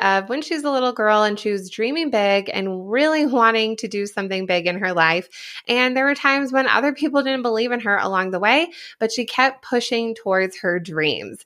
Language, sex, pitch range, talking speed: English, female, 200-270 Hz, 220 wpm